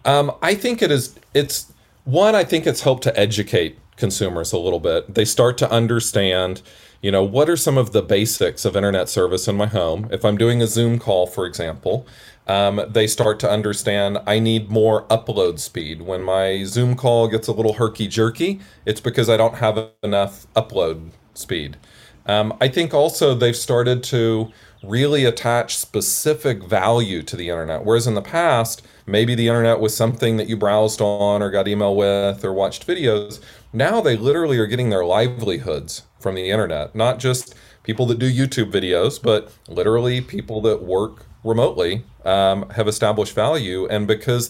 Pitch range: 100-120 Hz